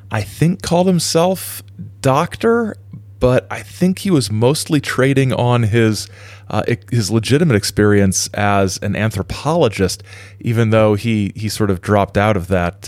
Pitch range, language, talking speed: 100-120 Hz, English, 145 wpm